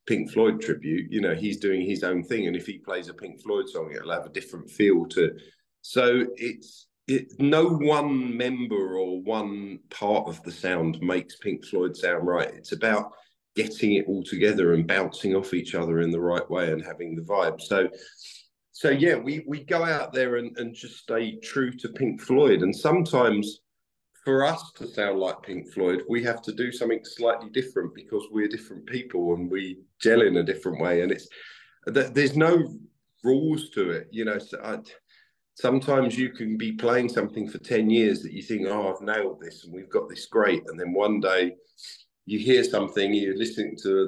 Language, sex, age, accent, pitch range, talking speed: English, male, 40-59, British, 100-145 Hz, 200 wpm